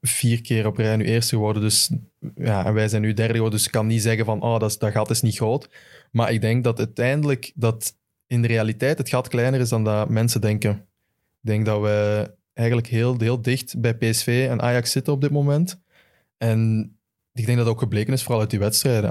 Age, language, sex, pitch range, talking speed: 20-39, Dutch, male, 110-125 Hz, 230 wpm